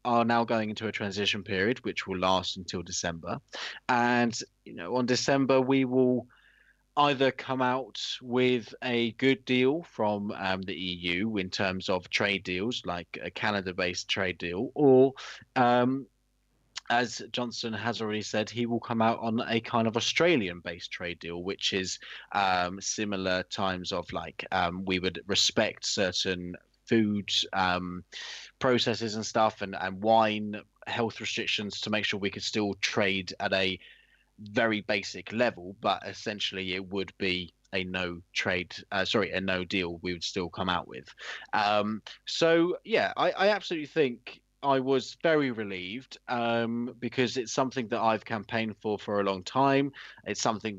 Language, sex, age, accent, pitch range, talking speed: English, male, 20-39, British, 95-125 Hz, 160 wpm